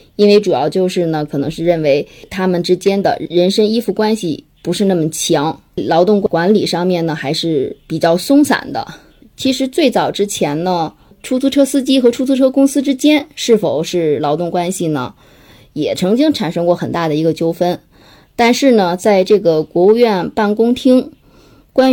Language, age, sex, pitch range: Chinese, 20-39, female, 165-235 Hz